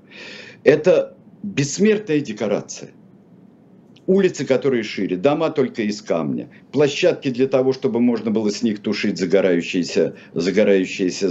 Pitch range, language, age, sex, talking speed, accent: 105-160 Hz, Russian, 50-69, male, 110 wpm, native